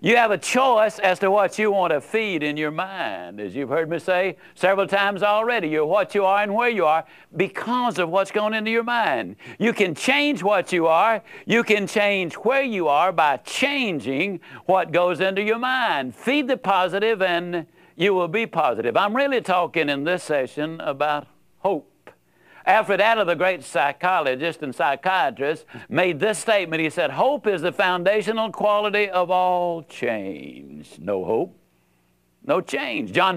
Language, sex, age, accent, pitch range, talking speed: English, male, 60-79, American, 155-220 Hz, 175 wpm